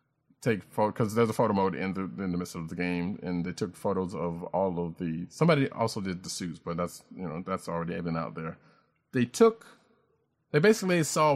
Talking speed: 220 wpm